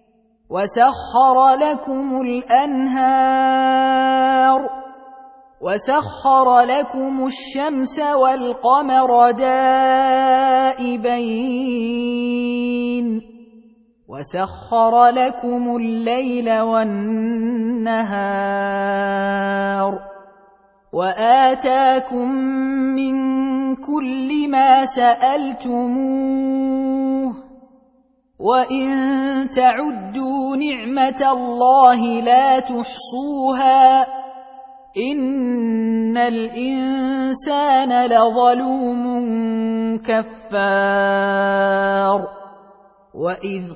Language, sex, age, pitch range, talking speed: Arabic, female, 30-49, 230-265 Hz, 40 wpm